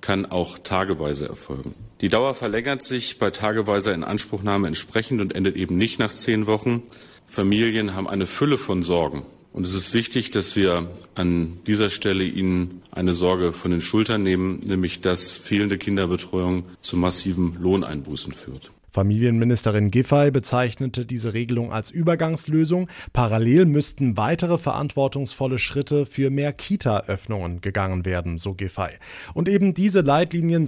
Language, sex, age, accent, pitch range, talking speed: German, male, 40-59, German, 95-135 Hz, 140 wpm